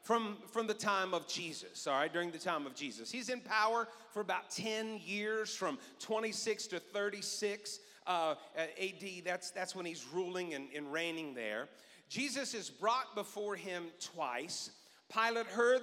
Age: 40-59